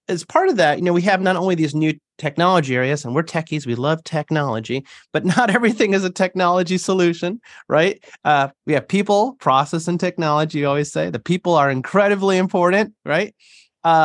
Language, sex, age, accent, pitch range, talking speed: English, male, 30-49, American, 130-185 Hz, 190 wpm